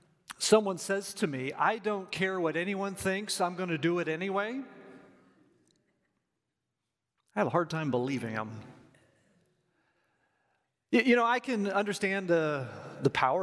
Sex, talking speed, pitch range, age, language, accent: male, 140 wpm, 145-210 Hz, 40-59, English, American